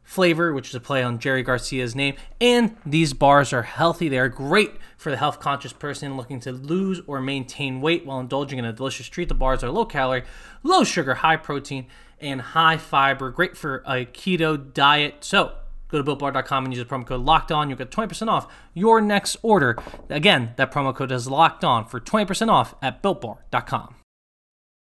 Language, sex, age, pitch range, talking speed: English, male, 20-39, 130-170 Hz, 195 wpm